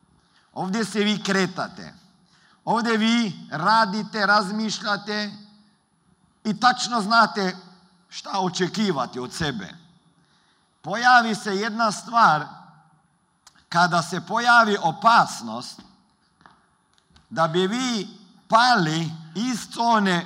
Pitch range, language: 160-210 Hz, Croatian